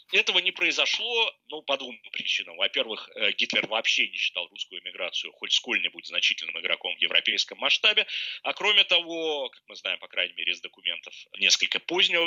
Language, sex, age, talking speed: Russian, male, 30-49, 165 wpm